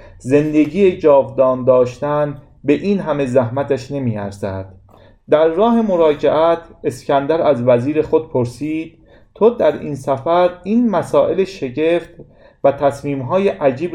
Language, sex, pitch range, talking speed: Persian, male, 110-155 Hz, 110 wpm